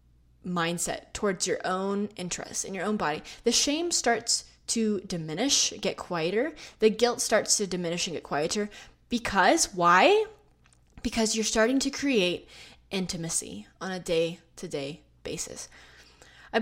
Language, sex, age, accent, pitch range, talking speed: English, female, 20-39, American, 180-240 Hz, 135 wpm